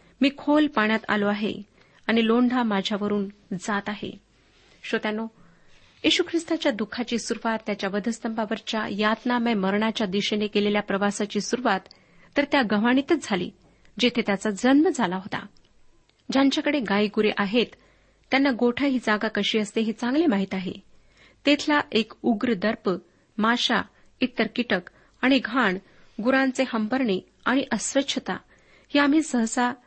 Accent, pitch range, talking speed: native, 205-250 Hz, 120 wpm